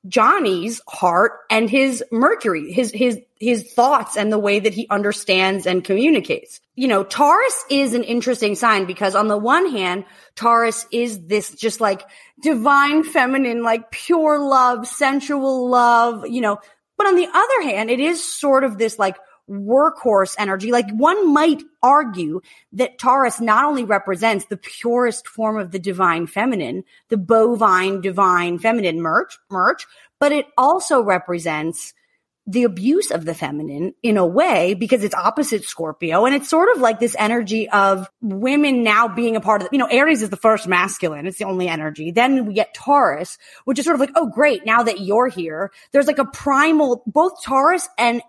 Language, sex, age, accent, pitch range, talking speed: English, female, 30-49, American, 200-270 Hz, 175 wpm